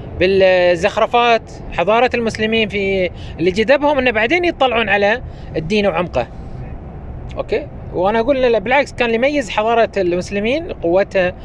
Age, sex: 20-39, male